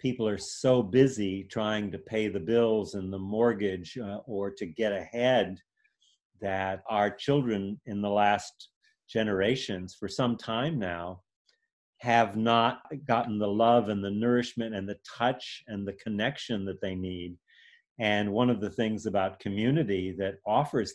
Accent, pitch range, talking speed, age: American, 100-125 Hz, 155 wpm, 40-59